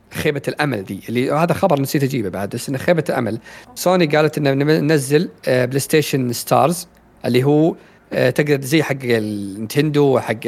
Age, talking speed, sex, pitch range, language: 40-59, 155 wpm, male, 120-165 Hz, Arabic